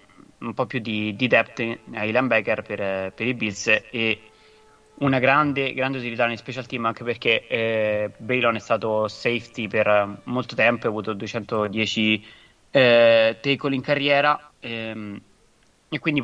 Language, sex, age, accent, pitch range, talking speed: Italian, male, 20-39, native, 105-125 Hz, 145 wpm